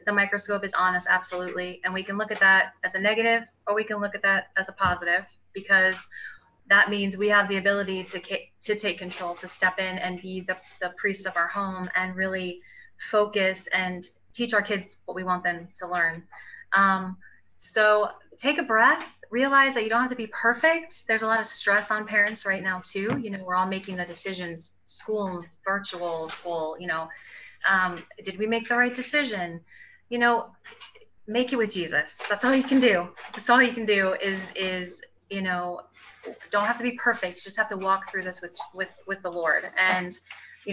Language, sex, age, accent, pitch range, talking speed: English, female, 30-49, American, 180-215 Hz, 205 wpm